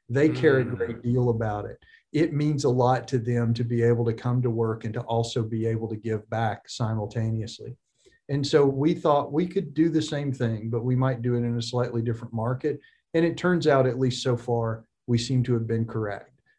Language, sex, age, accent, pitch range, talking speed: English, male, 40-59, American, 115-135 Hz, 230 wpm